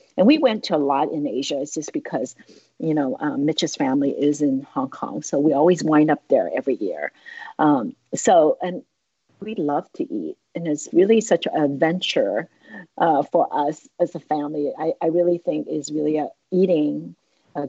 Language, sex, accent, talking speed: English, female, American, 190 wpm